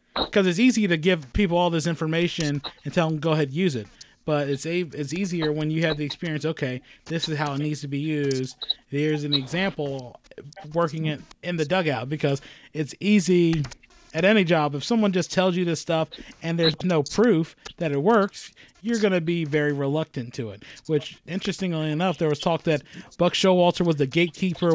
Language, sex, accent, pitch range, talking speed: English, male, American, 155-185 Hz, 200 wpm